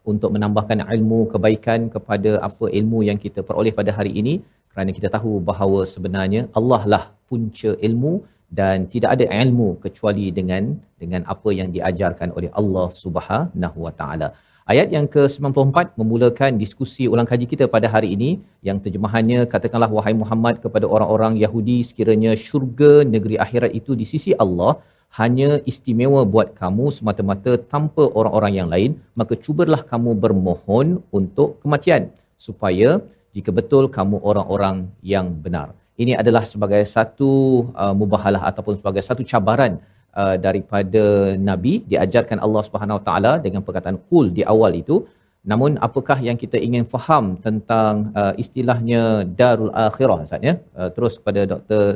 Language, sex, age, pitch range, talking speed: Malayalam, male, 40-59, 100-120 Hz, 145 wpm